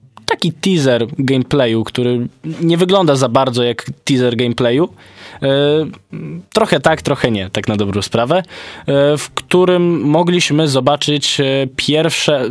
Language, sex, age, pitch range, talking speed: Polish, male, 20-39, 110-135 Hz, 115 wpm